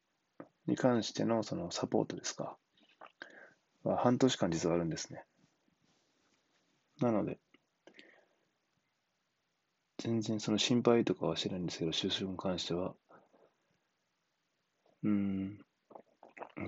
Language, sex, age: Japanese, male, 20-39